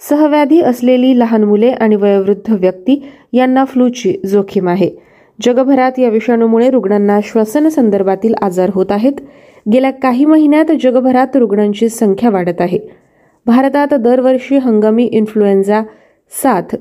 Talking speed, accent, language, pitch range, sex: 115 wpm, native, Marathi, 215-265 Hz, female